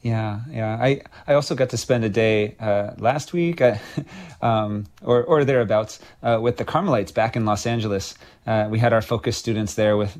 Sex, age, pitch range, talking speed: male, 30-49, 110-125 Hz, 200 wpm